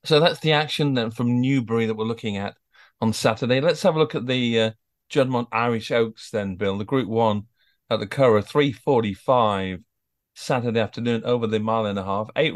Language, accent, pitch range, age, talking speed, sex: English, British, 110-130 Hz, 40-59, 195 wpm, male